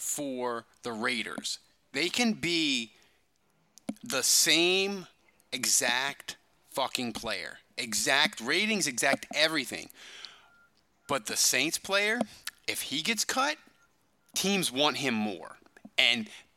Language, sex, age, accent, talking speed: English, male, 30-49, American, 100 wpm